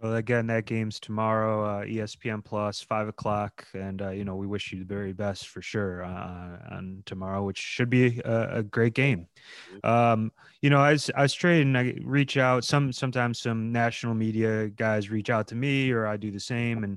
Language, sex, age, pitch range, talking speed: English, male, 20-39, 105-130 Hz, 210 wpm